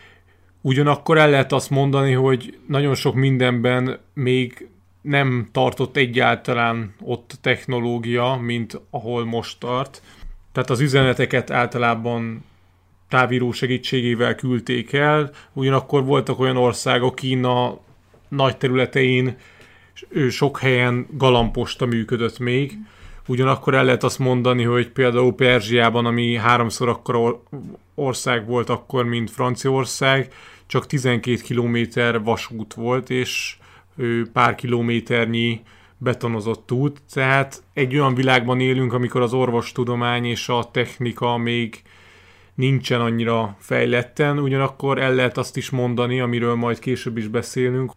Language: Hungarian